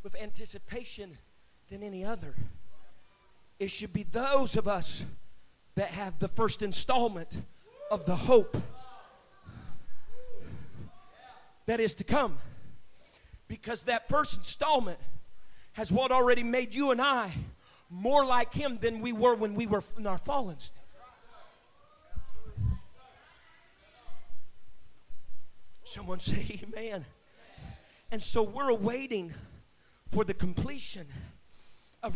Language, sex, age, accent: English, male, 40-59, American